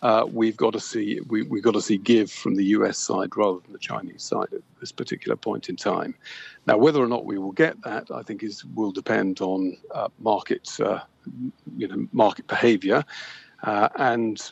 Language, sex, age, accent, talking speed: English, male, 50-69, British, 205 wpm